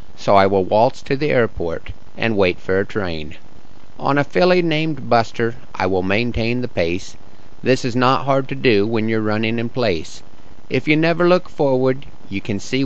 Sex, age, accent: male, 50-69, American